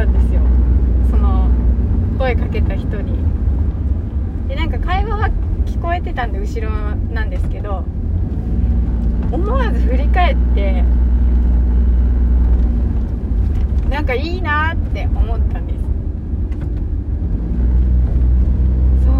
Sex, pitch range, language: female, 65-85 Hz, Japanese